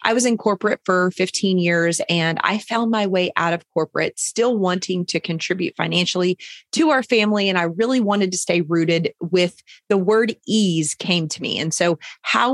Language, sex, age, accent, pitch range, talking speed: English, female, 30-49, American, 170-215 Hz, 190 wpm